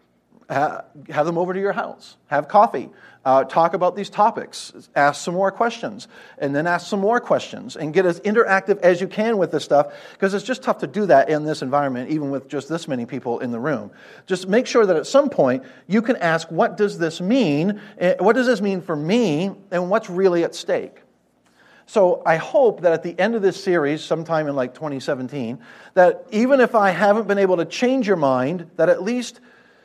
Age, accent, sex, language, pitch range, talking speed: 50-69, American, male, English, 140-200 Hz, 215 wpm